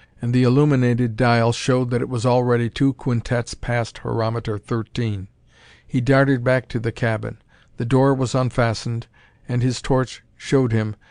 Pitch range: 115-130 Hz